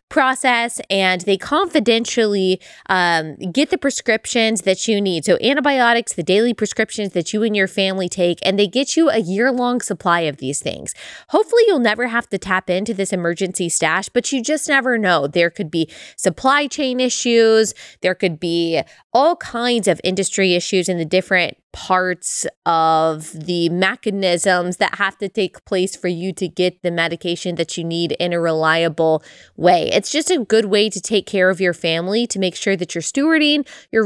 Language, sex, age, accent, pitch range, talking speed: English, female, 20-39, American, 175-235 Hz, 185 wpm